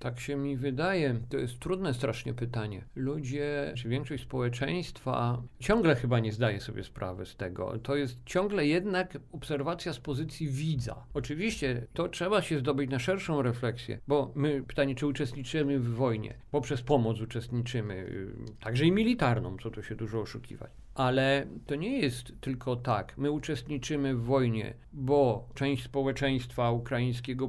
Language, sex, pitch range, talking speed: Polish, male, 125-155 Hz, 150 wpm